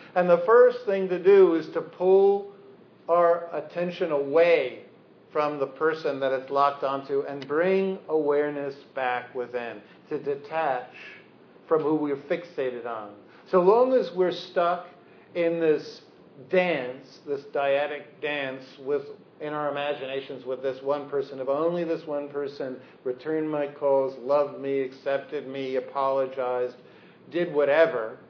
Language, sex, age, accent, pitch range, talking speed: English, male, 50-69, American, 135-180 Hz, 140 wpm